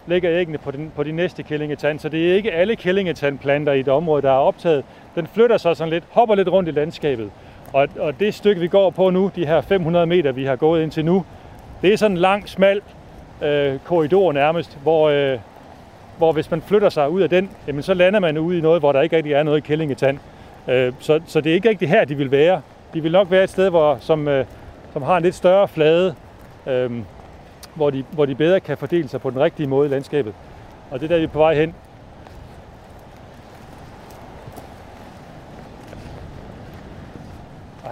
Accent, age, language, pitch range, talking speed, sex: native, 30-49, Danish, 145-180 Hz, 210 wpm, male